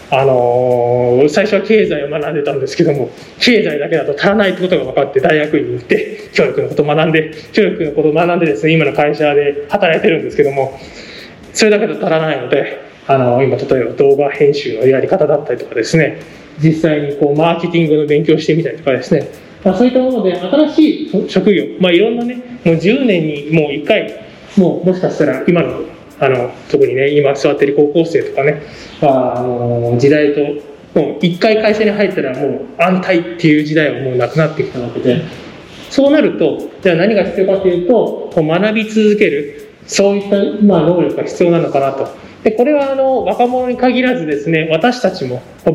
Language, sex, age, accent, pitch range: Japanese, male, 20-39, native, 155-220 Hz